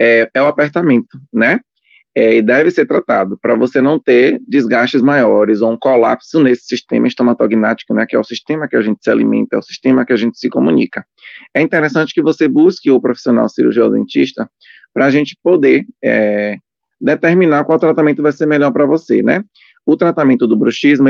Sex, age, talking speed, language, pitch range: male, 20-39, 190 wpm, Portuguese, 120-150 Hz